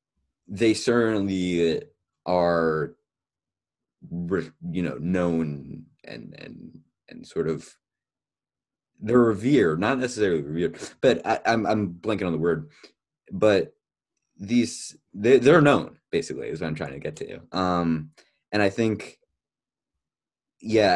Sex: male